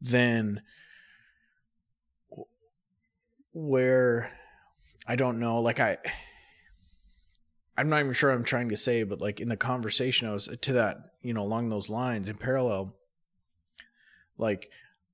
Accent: American